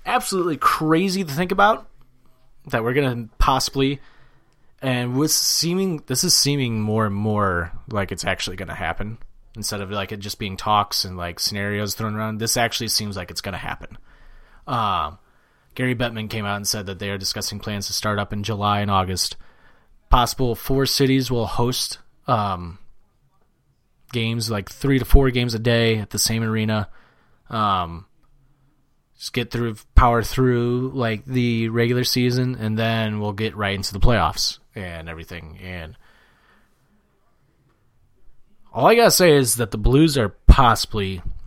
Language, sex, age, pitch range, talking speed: English, male, 30-49, 105-135 Hz, 165 wpm